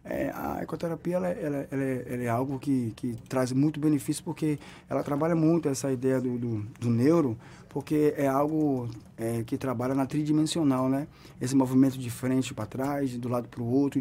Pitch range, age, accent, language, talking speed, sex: 125-155 Hz, 20-39, Brazilian, Portuguese, 195 wpm, male